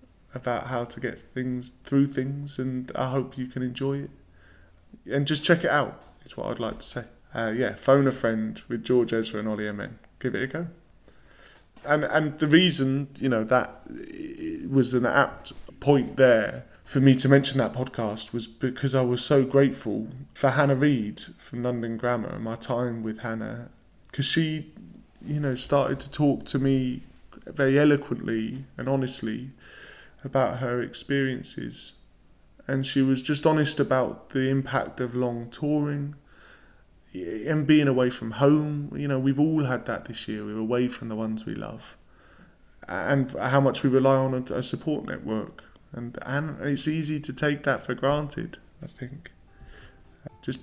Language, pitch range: English, 115-140 Hz